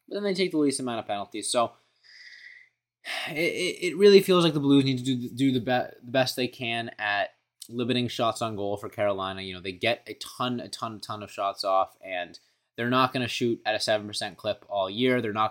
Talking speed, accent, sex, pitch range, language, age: 240 wpm, American, male, 100-125 Hz, English, 20-39